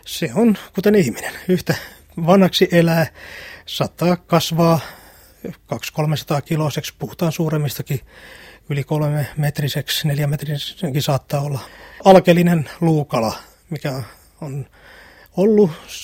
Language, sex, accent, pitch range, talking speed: Finnish, male, native, 140-170 Hz, 95 wpm